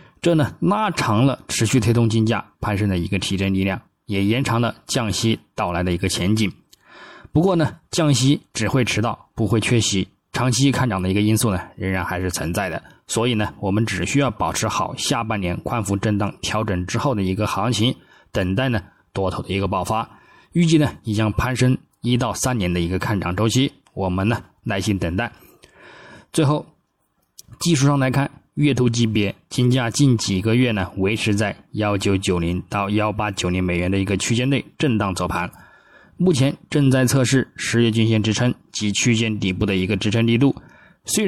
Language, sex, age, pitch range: Chinese, male, 20-39, 95-130 Hz